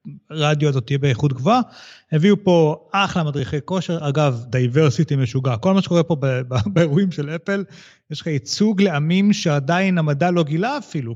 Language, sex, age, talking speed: Hebrew, male, 30-49, 165 wpm